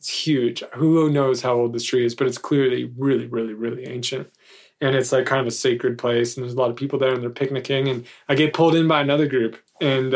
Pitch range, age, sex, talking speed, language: 125-140 Hz, 20-39, male, 255 wpm, English